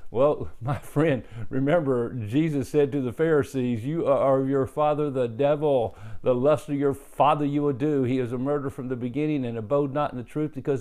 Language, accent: English, American